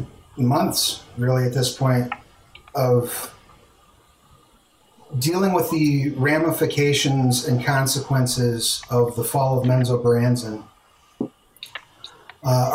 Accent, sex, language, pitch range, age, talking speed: American, male, English, 120-140 Hz, 30-49, 90 wpm